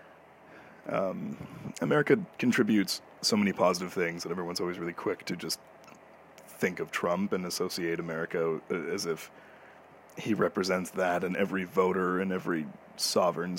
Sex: male